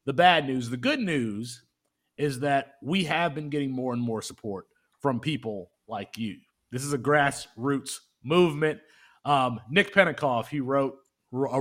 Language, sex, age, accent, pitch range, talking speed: English, male, 30-49, American, 115-160 Hz, 160 wpm